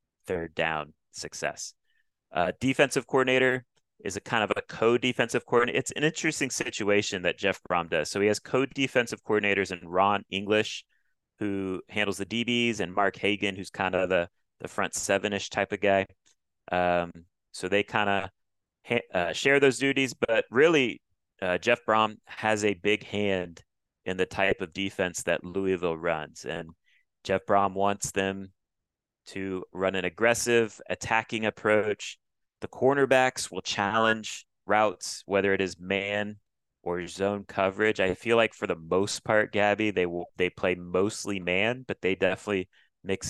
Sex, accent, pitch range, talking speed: male, American, 95-110 Hz, 160 wpm